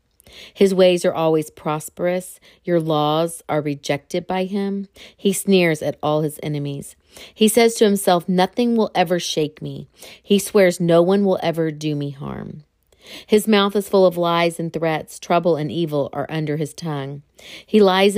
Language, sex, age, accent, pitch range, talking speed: English, female, 40-59, American, 150-185 Hz, 170 wpm